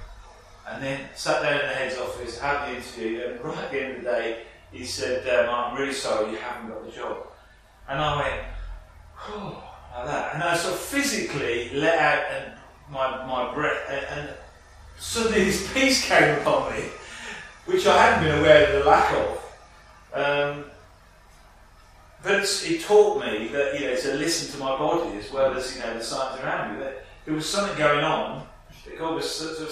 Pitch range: 125-180 Hz